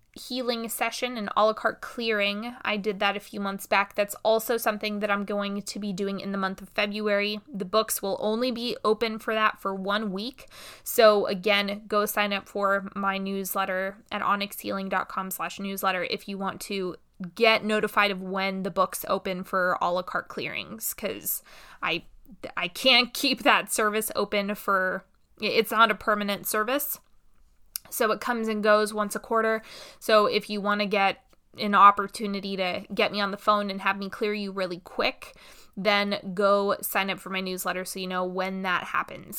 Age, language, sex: 20-39, English, female